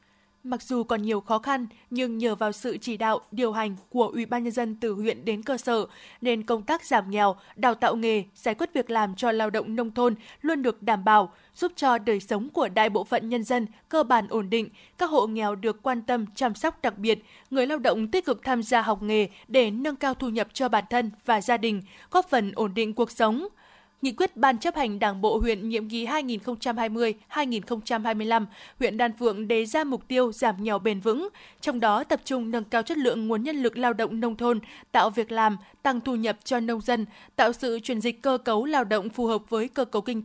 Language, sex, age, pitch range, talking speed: Vietnamese, female, 20-39, 220-255 Hz, 230 wpm